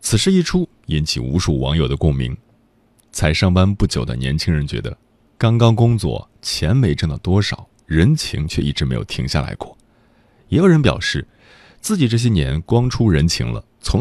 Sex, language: male, Chinese